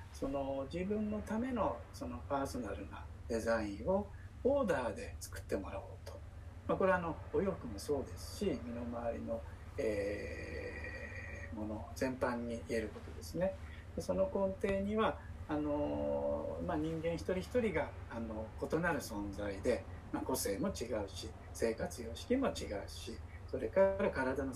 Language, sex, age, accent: Japanese, male, 60-79, native